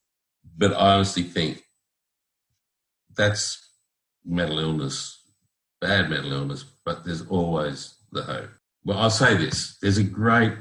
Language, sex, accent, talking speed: English, male, Australian, 125 wpm